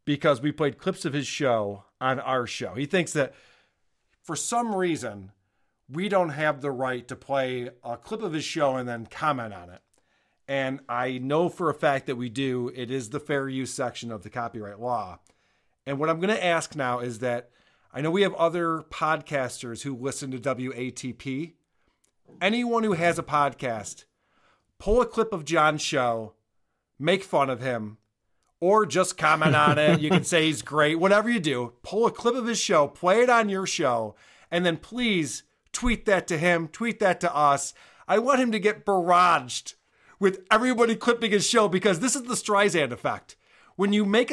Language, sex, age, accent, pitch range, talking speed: English, male, 40-59, American, 130-200 Hz, 190 wpm